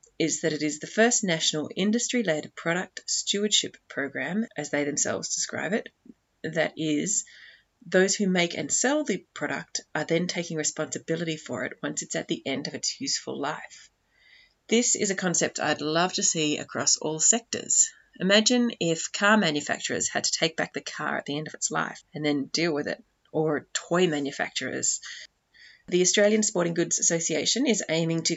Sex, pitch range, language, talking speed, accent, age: female, 155-205 Hz, English, 175 wpm, Australian, 30-49